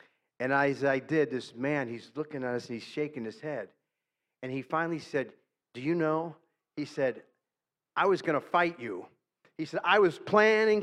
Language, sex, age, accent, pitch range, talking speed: English, male, 40-59, American, 120-155 Hz, 195 wpm